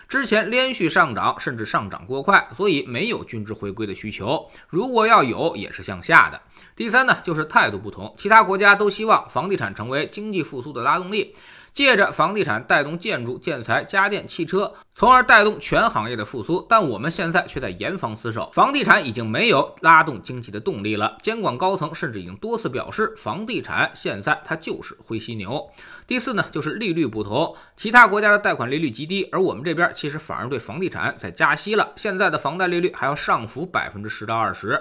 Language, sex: Chinese, male